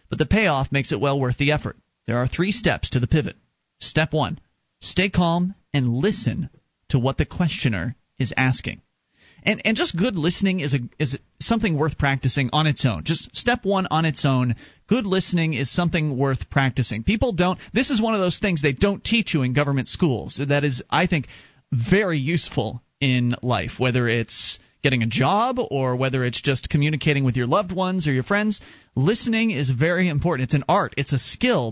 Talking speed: 200 wpm